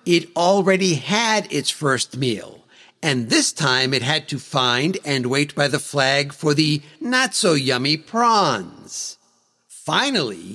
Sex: male